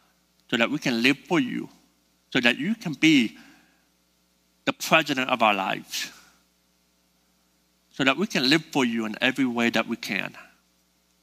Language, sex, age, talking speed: English, male, 60-79, 160 wpm